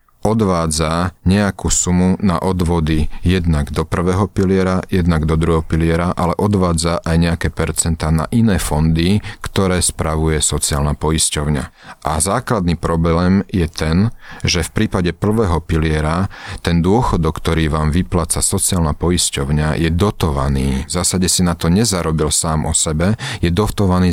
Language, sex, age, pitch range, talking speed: Slovak, male, 40-59, 80-95 Hz, 135 wpm